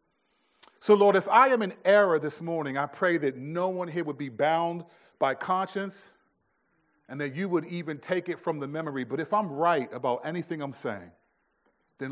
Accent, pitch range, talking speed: American, 140-205 Hz, 195 wpm